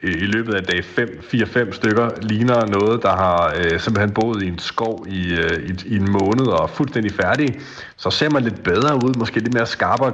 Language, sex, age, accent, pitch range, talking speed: Danish, male, 40-59, native, 95-125 Hz, 205 wpm